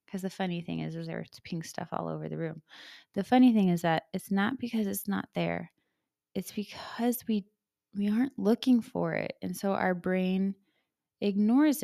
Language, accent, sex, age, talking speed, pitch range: English, American, female, 20-39, 175 wpm, 170-210 Hz